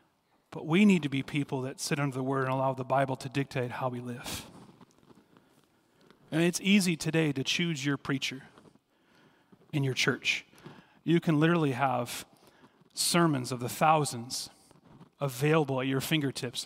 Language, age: English, 40-59